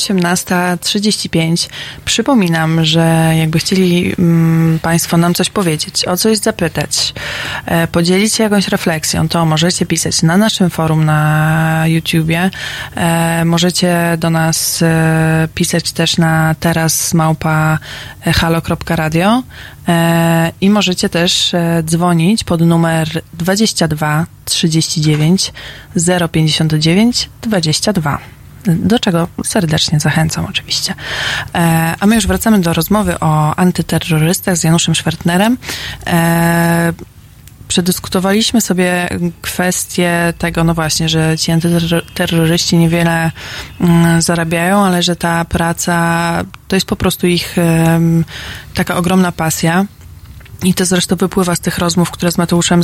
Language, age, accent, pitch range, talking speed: Polish, 20-39, native, 165-180 Hz, 110 wpm